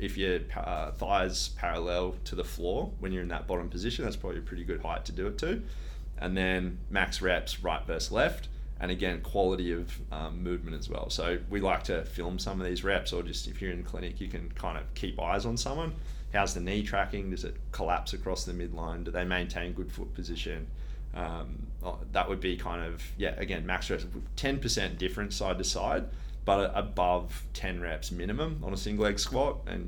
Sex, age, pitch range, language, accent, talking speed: male, 30-49, 80-95 Hz, English, Australian, 205 wpm